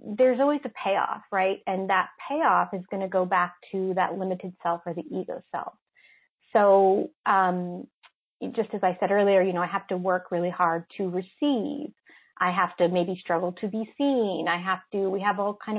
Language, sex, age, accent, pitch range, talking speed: English, female, 30-49, American, 170-195 Hz, 200 wpm